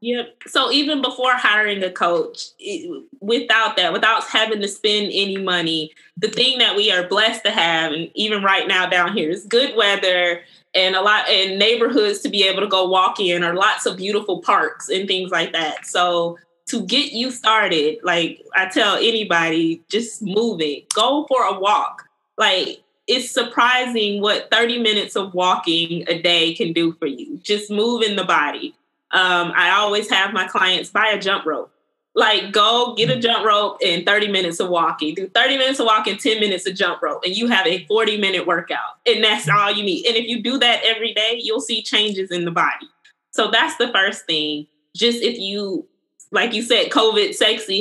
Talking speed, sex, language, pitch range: 195 wpm, female, English, 185-235 Hz